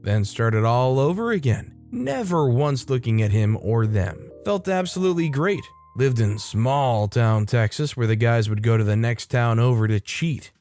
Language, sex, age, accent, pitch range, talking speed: English, male, 20-39, American, 110-145 Hz, 180 wpm